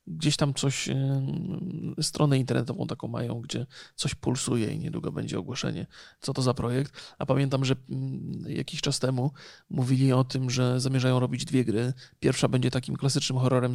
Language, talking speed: Polish, 160 wpm